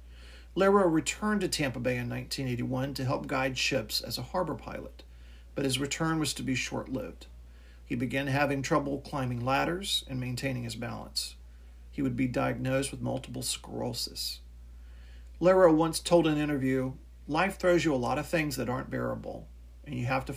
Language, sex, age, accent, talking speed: English, male, 40-59, American, 170 wpm